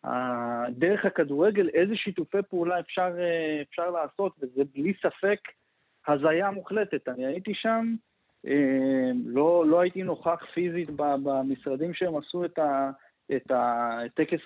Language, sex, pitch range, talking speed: Hebrew, male, 135-195 Hz, 110 wpm